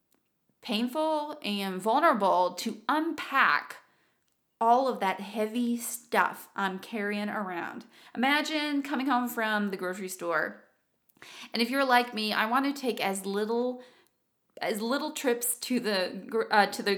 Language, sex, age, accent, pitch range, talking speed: English, female, 20-39, American, 200-245 Hz, 140 wpm